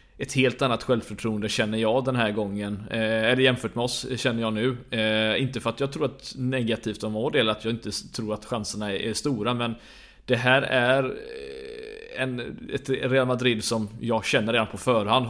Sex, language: male, Swedish